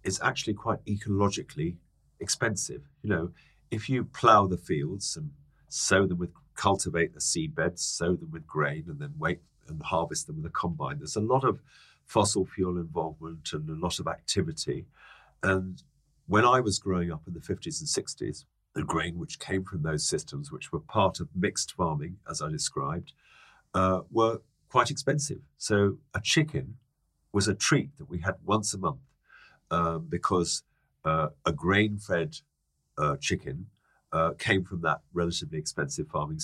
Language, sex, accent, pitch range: English, male, British, 85-115 Hz